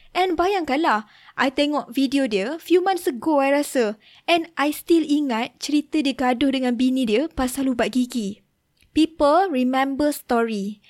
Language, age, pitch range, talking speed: Malay, 20-39, 235-285 Hz, 150 wpm